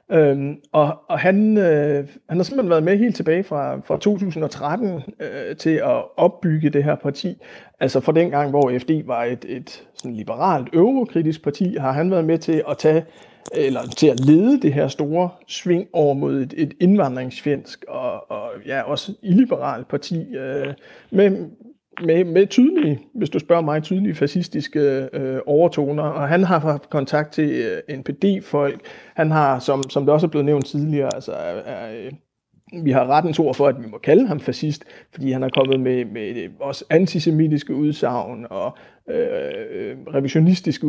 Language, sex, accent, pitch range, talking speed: Danish, male, native, 140-175 Hz, 175 wpm